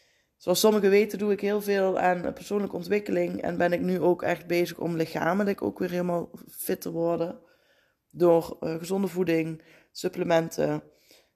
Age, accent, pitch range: 20-39, Dutch, 165-200 Hz